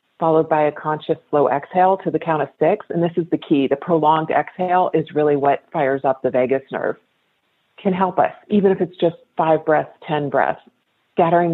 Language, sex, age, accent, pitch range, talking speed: English, female, 40-59, American, 140-165 Hz, 205 wpm